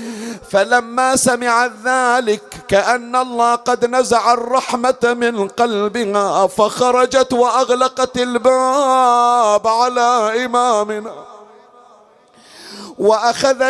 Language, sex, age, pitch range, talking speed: Arabic, male, 50-69, 230-255 Hz, 70 wpm